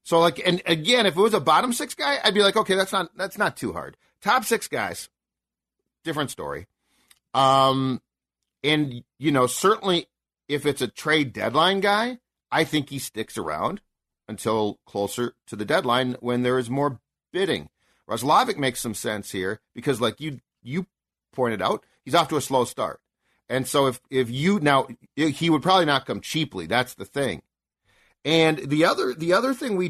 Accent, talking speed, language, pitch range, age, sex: American, 185 wpm, English, 115-155 Hz, 40-59, male